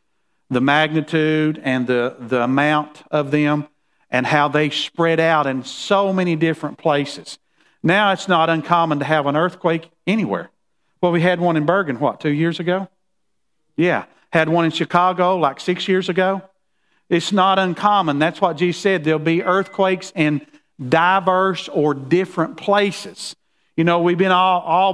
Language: English